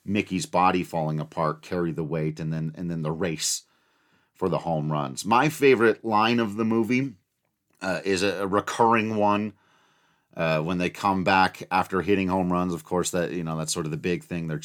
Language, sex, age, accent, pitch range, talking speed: English, male, 40-59, American, 85-105 Hz, 200 wpm